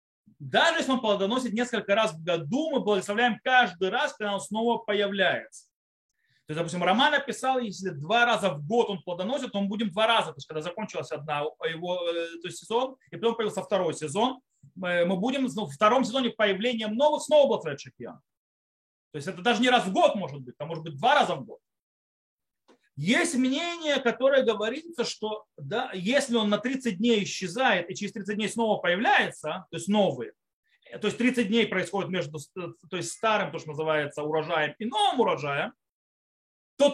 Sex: male